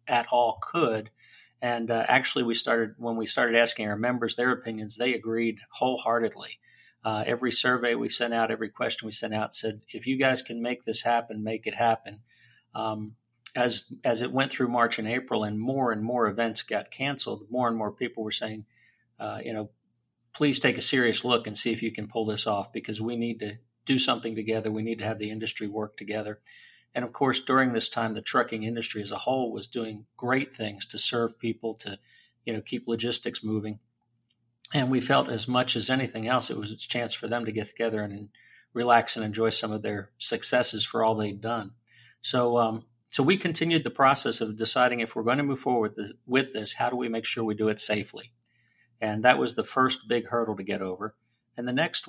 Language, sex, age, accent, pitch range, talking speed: English, male, 40-59, American, 110-120 Hz, 220 wpm